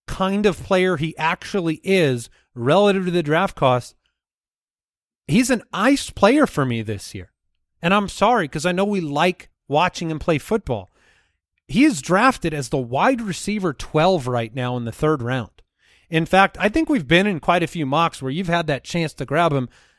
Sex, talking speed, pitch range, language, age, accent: male, 190 wpm, 140-185 Hz, English, 30-49, American